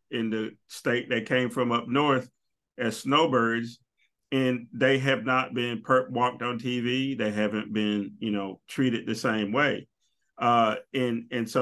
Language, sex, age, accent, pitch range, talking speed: English, male, 40-59, American, 110-130 Hz, 165 wpm